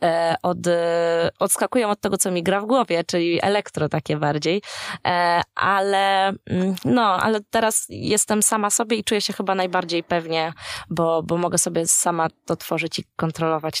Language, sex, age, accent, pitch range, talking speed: Polish, female, 20-39, native, 170-205 Hz, 150 wpm